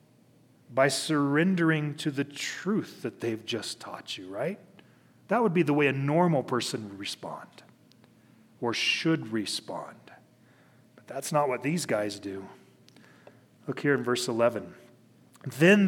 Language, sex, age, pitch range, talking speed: English, male, 40-59, 135-190 Hz, 140 wpm